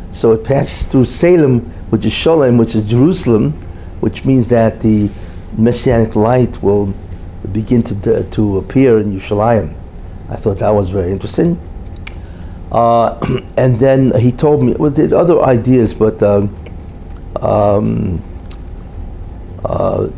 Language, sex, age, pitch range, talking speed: English, male, 60-79, 90-120 Hz, 130 wpm